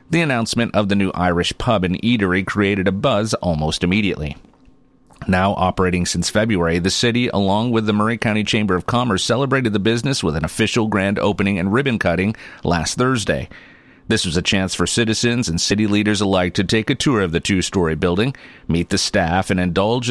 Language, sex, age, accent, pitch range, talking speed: English, male, 40-59, American, 90-120 Hz, 190 wpm